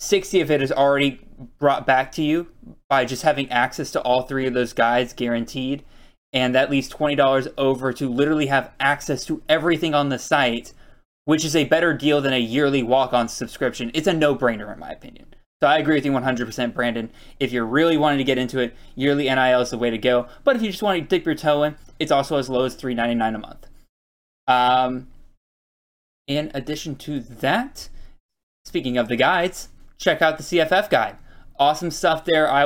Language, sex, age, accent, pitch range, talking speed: English, male, 10-29, American, 125-155 Hz, 200 wpm